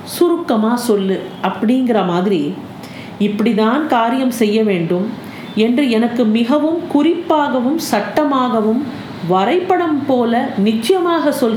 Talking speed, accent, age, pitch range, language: 90 wpm, native, 40-59, 200-280 Hz, Tamil